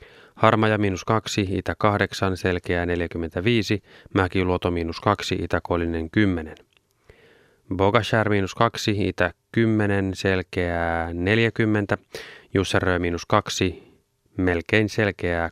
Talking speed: 90 wpm